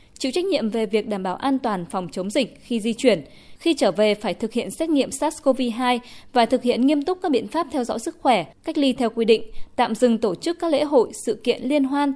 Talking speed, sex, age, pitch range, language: 255 wpm, female, 20-39, 210-280 Hz, Vietnamese